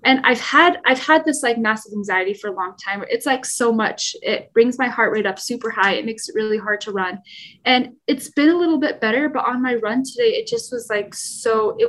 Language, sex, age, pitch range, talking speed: English, female, 10-29, 205-255 Hz, 250 wpm